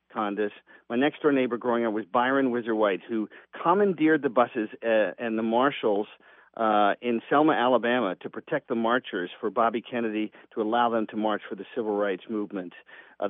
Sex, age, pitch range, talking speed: male, 40-59, 115-135 Hz, 165 wpm